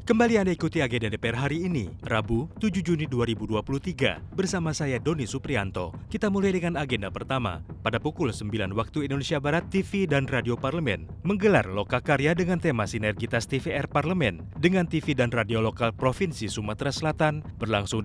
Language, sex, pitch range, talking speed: Indonesian, male, 110-155 Hz, 155 wpm